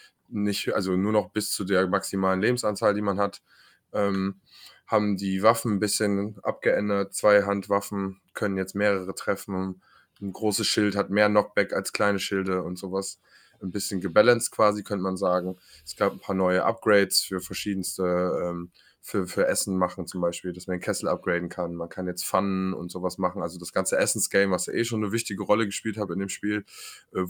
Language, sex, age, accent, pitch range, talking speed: German, male, 20-39, German, 90-105 Hz, 195 wpm